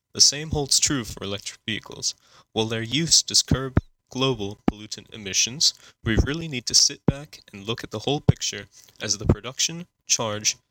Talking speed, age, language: 175 wpm, 20-39, English